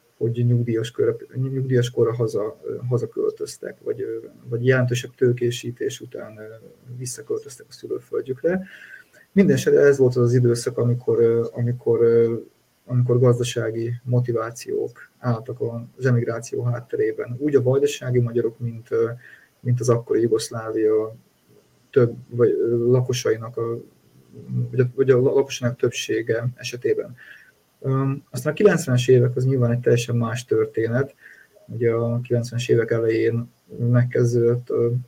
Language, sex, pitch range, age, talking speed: Hungarian, male, 120-135 Hz, 20-39, 110 wpm